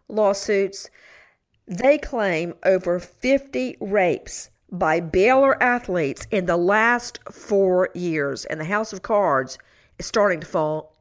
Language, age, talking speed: English, 50-69, 125 wpm